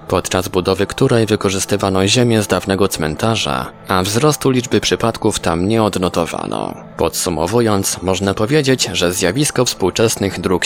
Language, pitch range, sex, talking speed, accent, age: Polish, 95-120 Hz, male, 125 wpm, native, 20-39